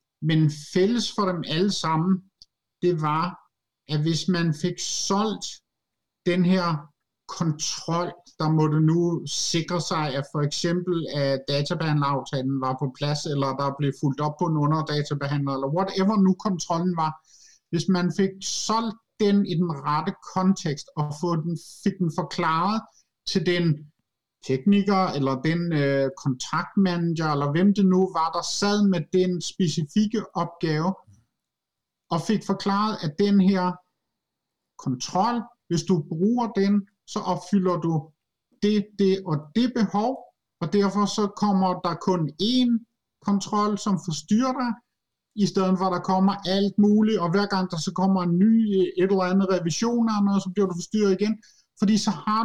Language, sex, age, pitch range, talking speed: Danish, male, 50-69, 160-200 Hz, 150 wpm